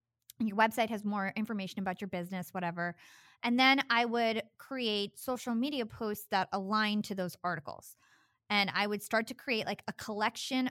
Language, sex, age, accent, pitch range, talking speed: English, female, 20-39, American, 185-230 Hz, 175 wpm